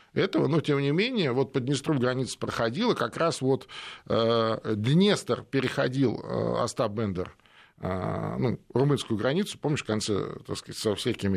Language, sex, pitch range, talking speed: Russian, male, 100-135 Hz, 160 wpm